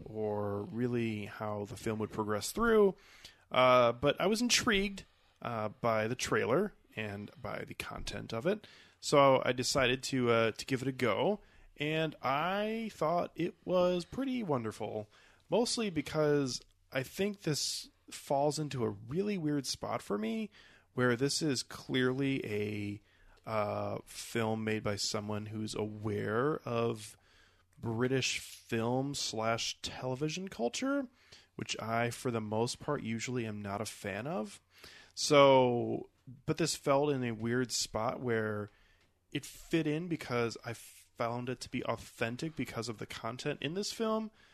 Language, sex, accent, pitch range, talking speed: English, male, American, 105-140 Hz, 145 wpm